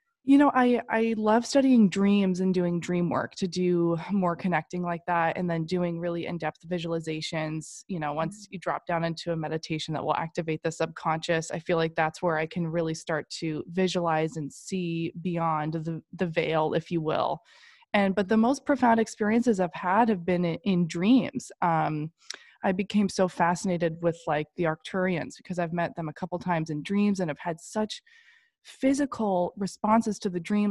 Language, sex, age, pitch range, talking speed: English, female, 20-39, 165-205 Hz, 190 wpm